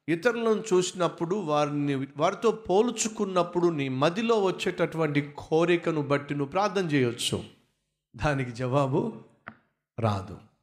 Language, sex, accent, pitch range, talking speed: Telugu, male, native, 135-180 Hz, 85 wpm